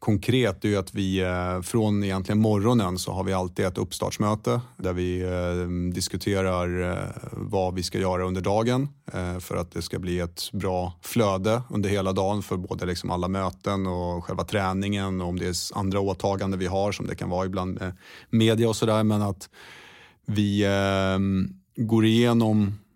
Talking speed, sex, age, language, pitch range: 170 wpm, male, 30-49, Swedish, 90-105 Hz